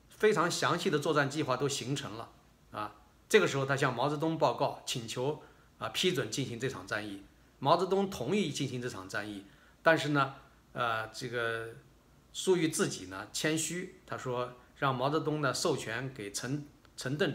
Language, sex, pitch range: Chinese, male, 120-160 Hz